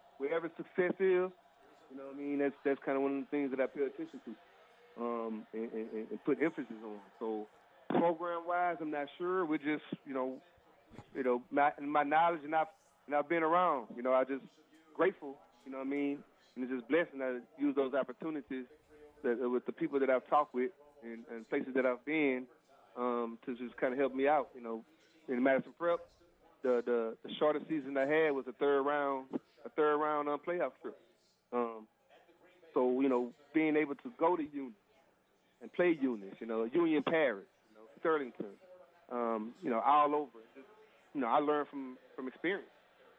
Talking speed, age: 195 wpm, 30-49